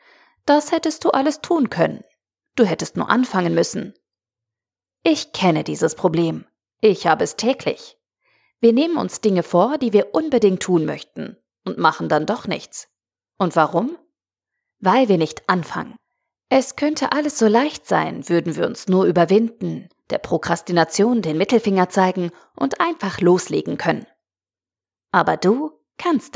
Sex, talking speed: female, 145 wpm